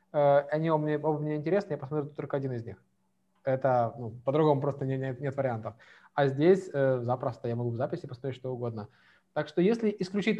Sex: male